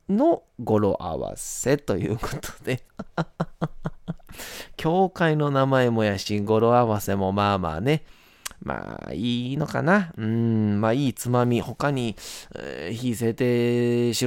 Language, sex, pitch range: Japanese, male, 110-175 Hz